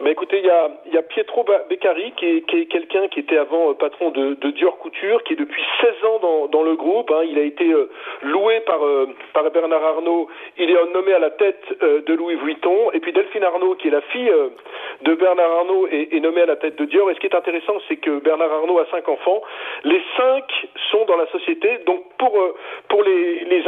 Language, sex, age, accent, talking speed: French, male, 40-59, French, 245 wpm